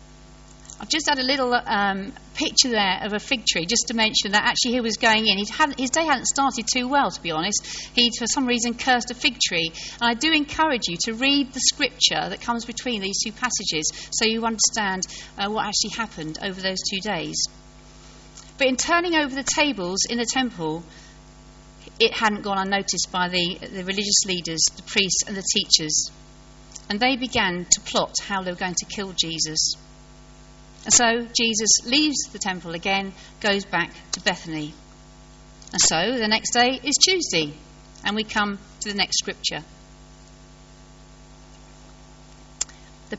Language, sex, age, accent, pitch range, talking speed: English, female, 40-59, British, 155-240 Hz, 180 wpm